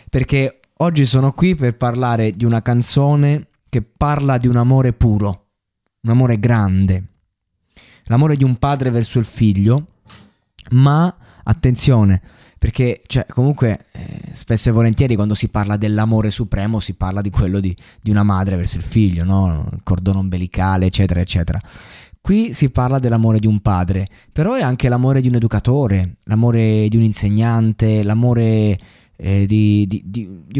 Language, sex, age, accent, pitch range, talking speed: Italian, male, 20-39, native, 100-125 Hz, 155 wpm